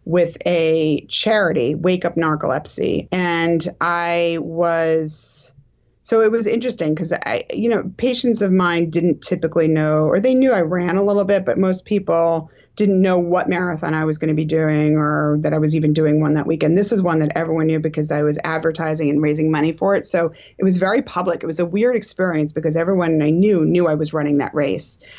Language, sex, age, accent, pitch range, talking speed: English, female, 30-49, American, 155-180 Hz, 210 wpm